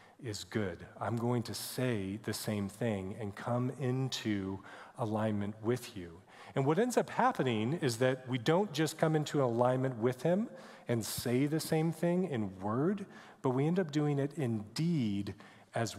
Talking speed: 175 wpm